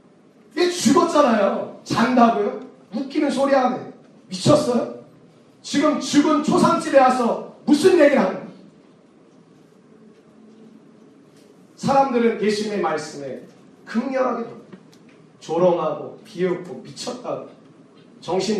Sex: male